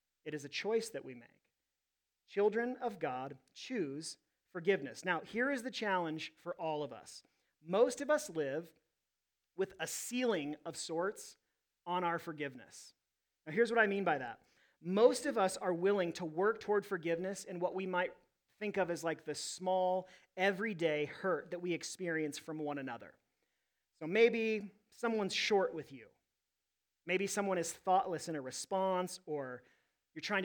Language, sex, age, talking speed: English, male, 40-59, 165 wpm